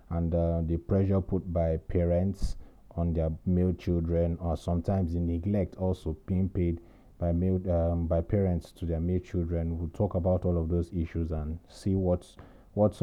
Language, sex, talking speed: English, male, 180 wpm